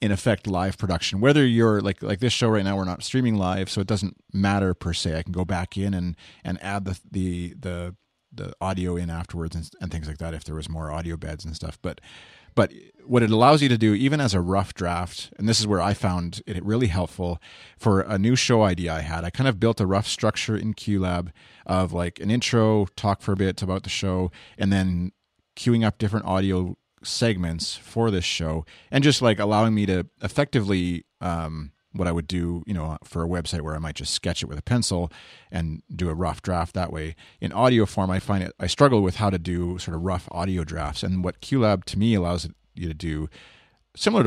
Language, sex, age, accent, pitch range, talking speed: English, male, 30-49, American, 85-105 Hz, 230 wpm